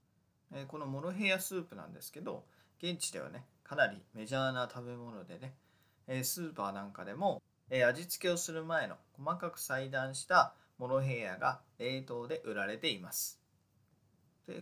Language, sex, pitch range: Japanese, male, 120-165 Hz